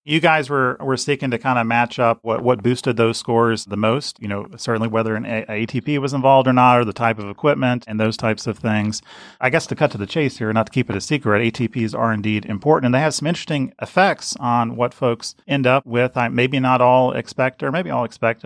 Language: English